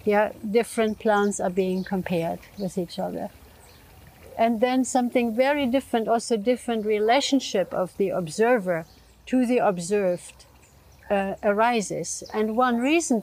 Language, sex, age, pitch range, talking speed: English, female, 60-79, 200-240 Hz, 125 wpm